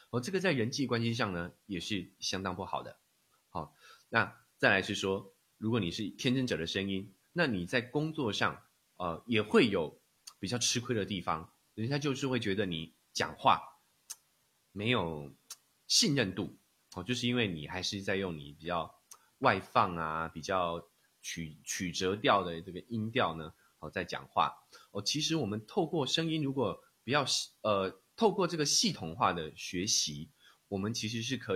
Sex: male